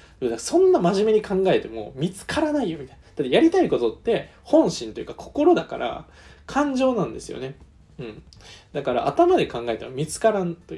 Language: Japanese